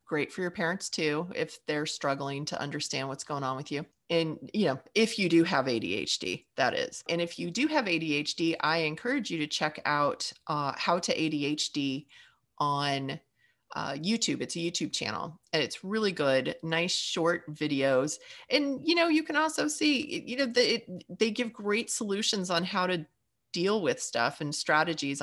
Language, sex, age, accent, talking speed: English, female, 30-49, American, 185 wpm